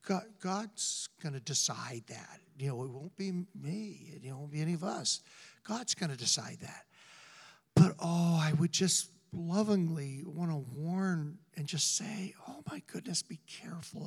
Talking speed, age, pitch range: 165 wpm, 60-79, 145-175 Hz